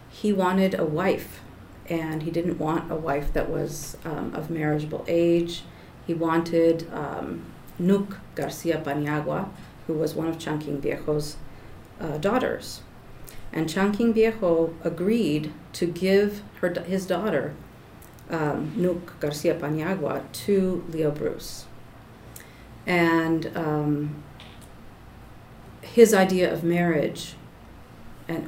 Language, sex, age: English, female, 40-59